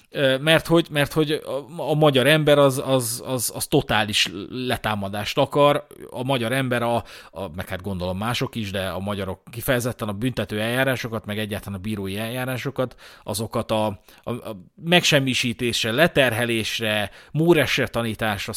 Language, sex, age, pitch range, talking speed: Hungarian, male, 30-49, 105-130 Hz, 125 wpm